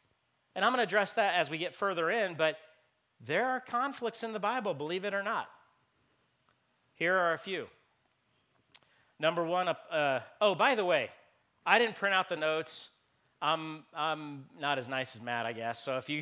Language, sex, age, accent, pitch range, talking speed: English, male, 40-59, American, 135-170 Hz, 190 wpm